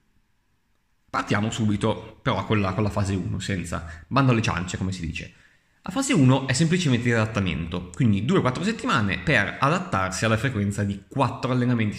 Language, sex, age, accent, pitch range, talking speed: Italian, male, 20-39, native, 100-130 Hz, 160 wpm